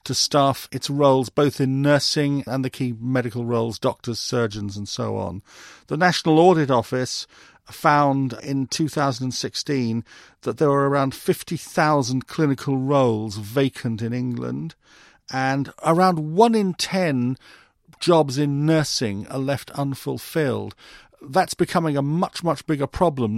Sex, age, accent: male, 50-69, British